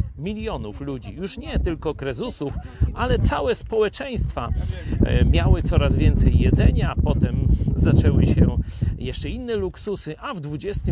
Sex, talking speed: male, 125 wpm